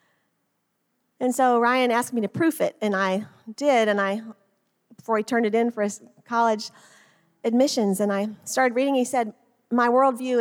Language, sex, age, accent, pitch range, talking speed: English, female, 40-59, American, 200-235 Hz, 175 wpm